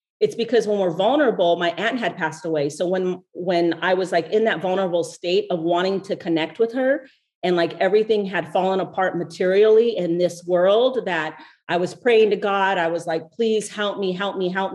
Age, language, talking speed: 40-59, English, 210 wpm